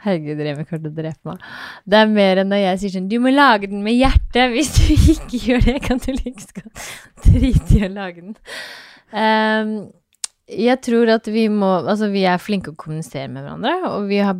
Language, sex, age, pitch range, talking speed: English, female, 20-39, 150-200 Hz, 205 wpm